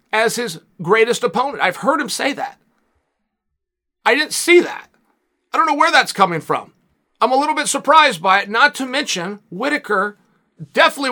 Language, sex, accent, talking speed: English, male, American, 175 wpm